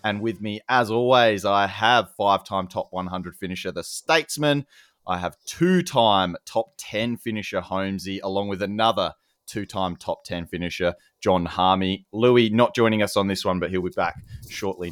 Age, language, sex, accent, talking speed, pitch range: 20-39, English, male, Australian, 165 wpm, 95-125 Hz